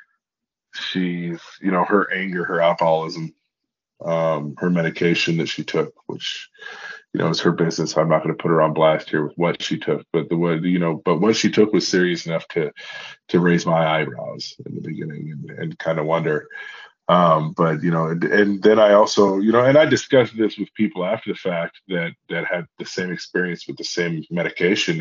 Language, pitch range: English, 85-115 Hz